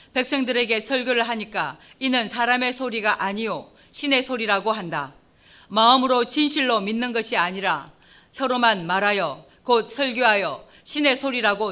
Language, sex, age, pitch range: Korean, female, 40-59, 210-255 Hz